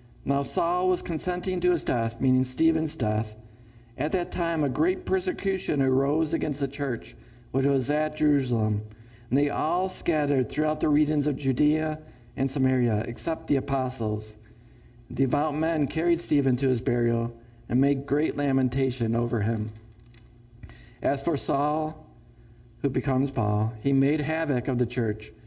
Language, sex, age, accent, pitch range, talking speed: English, male, 50-69, American, 115-150 Hz, 150 wpm